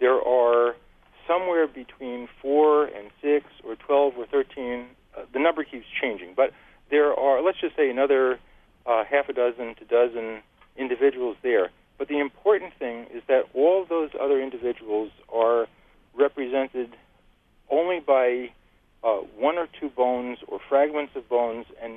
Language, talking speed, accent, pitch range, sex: English, 150 wpm, American, 120-155 Hz, male